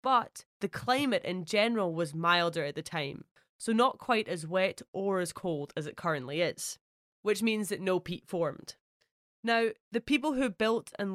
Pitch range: 170-220 Hz